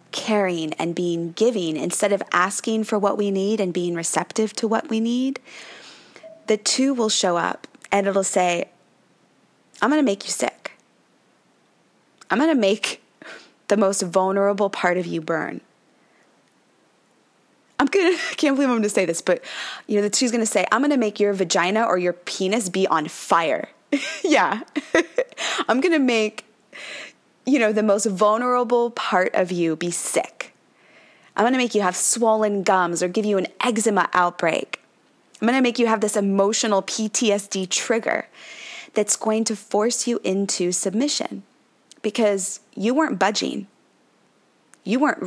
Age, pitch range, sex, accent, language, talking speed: 20-39, 190-245 Hz, female, American, English, 165 wpm